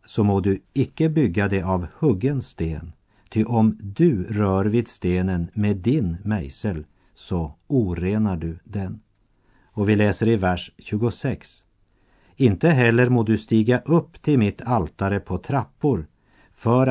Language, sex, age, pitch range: Korean, male, 50-69, 95-120 Hz